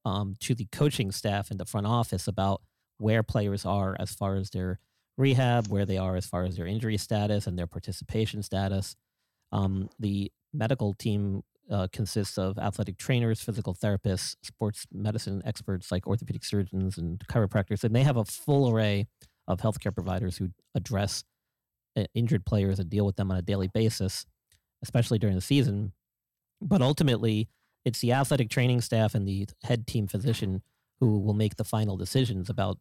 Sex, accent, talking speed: male, American, 170 wpm